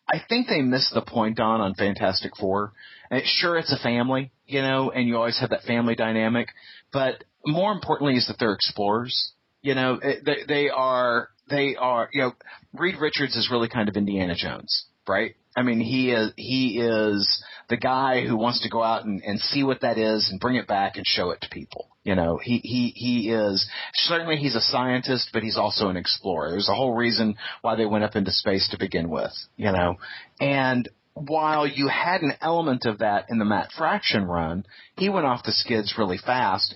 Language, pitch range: English, 105-140 Hz